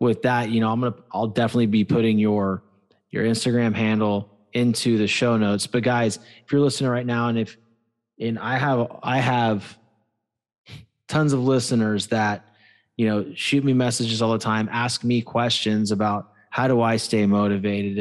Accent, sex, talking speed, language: American, male, 180 wpm, English